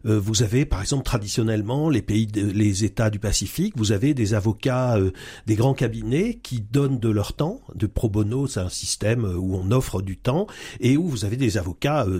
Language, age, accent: French, 40-59, French